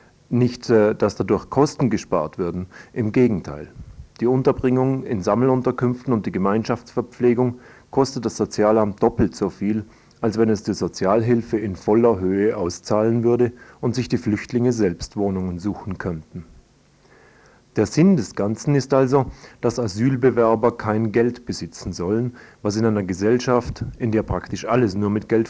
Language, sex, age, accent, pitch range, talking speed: German, male, 40-59, German, 100-125 Hz, 145 wpm